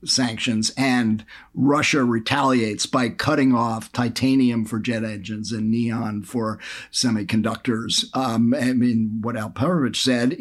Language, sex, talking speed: English, male, 125 wpm